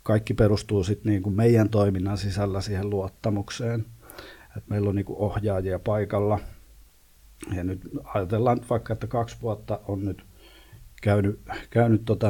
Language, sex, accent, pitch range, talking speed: Finnish, male, native, 95-105 Hz, 130 wpm